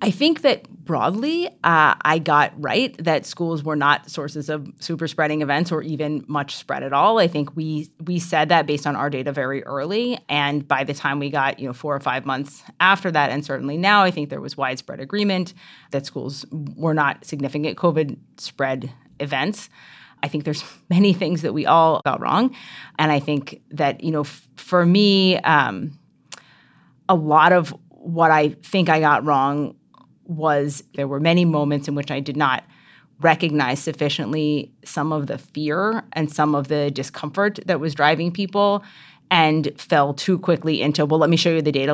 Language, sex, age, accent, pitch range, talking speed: English, female, 30-49, American, 145-175 Hz, 190 wpm